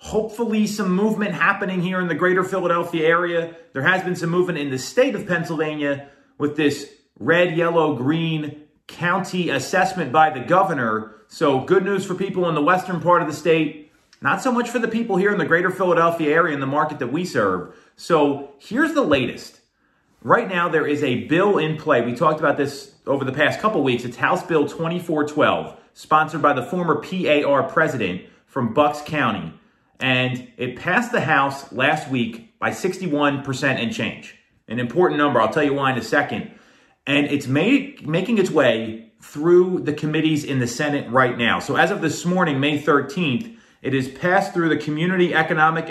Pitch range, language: 140-180 Hz, English